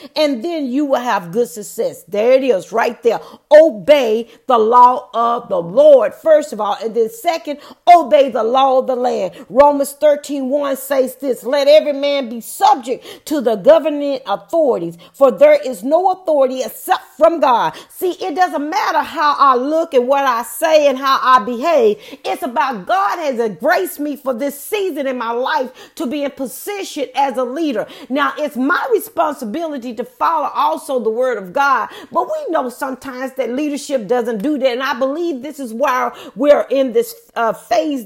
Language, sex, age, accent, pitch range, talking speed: English, female, 40-59, American, 255-310 Hz, 185 wpm